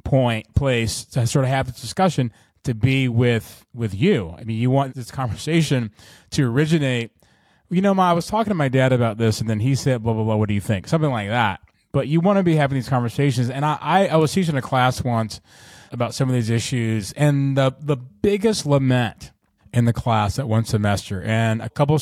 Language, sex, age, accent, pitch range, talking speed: English, male, 30-49, American, 110-140 Hz, 220 wpm